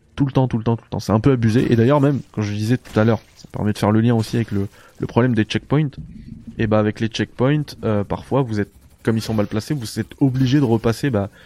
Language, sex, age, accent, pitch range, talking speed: French, male, 20-39, French, 105-130 Hz, 285 wpm